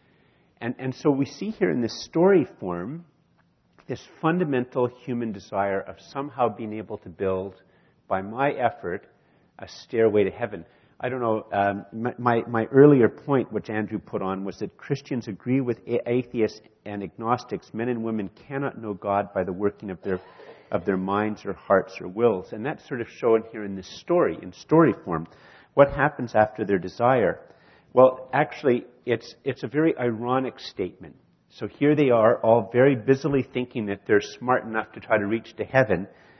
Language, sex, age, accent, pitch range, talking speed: English, male, 50-69, American, 100-130 Hz, 180 wpm